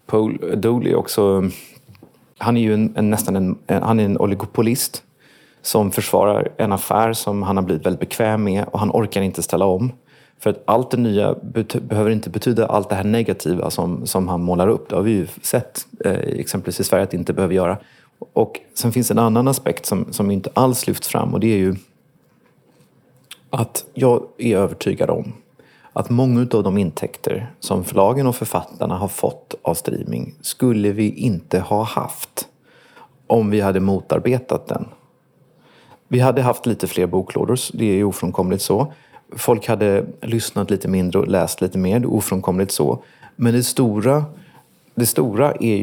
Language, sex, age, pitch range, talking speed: Swedish, male, 30-49, 95-120 Hz, 180 wpm